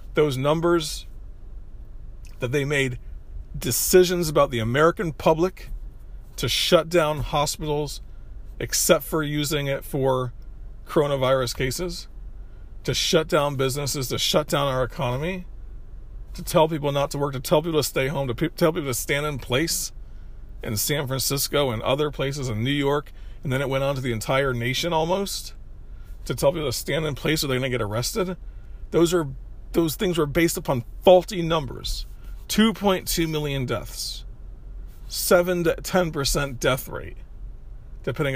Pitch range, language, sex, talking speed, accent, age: 115-155 Hz, English, male, 155 wpm, American, 40-59